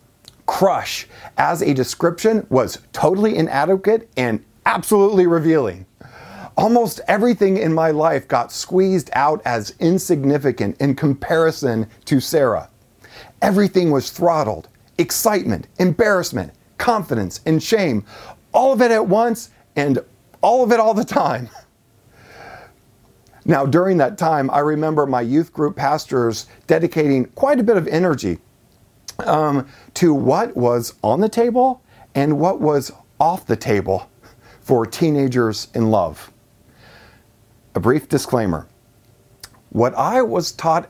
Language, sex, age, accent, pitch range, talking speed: English, male, 40-59, American, 115-175 Hz, 125 wpm